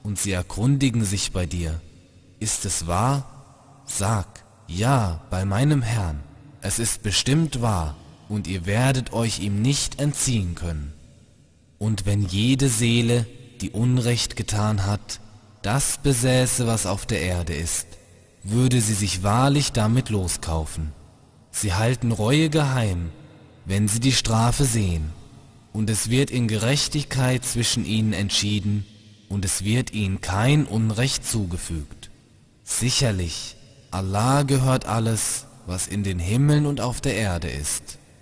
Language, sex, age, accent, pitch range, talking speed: German, male, 20-39, German, 95-125 Hz, 130 wpm